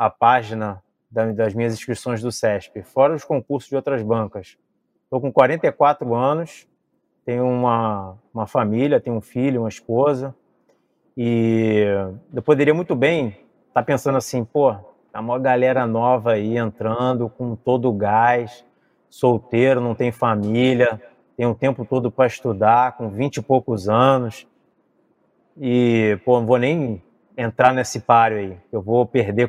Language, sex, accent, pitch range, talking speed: Portuguese, male, Brazilian, 115-135 Hz, 150 wpm